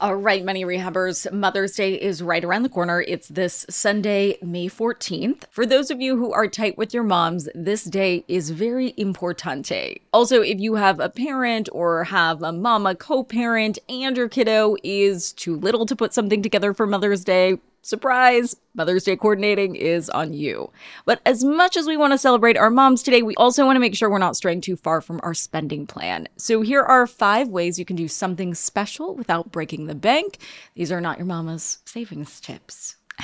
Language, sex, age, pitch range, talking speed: English, female, 20-39, 175-230 Hz, 200 wpm